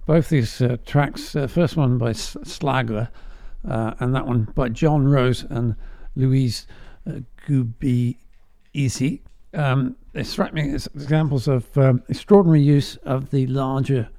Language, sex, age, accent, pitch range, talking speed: English, male, 50-69, British, 115-140 Hz, 150 wpm